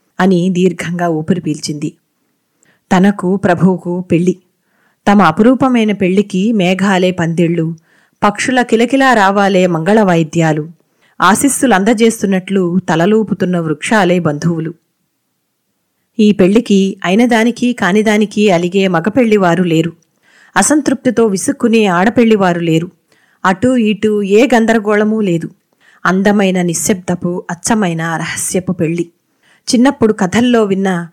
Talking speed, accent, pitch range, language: 85 wpm, native, 175-220 Hz, Telugu